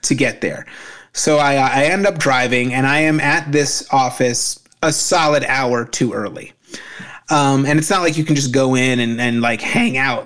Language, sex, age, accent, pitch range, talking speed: English, male, 30-49, American, 125-145 Hz, 205 wpm